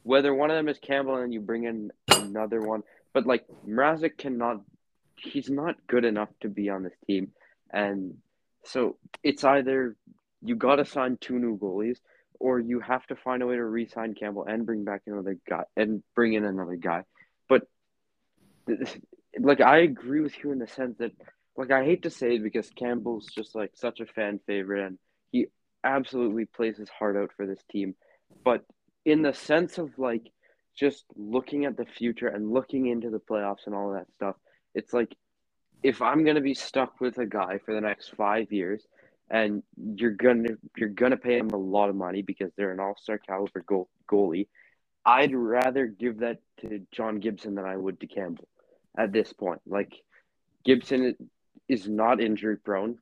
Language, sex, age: English, male, 20-39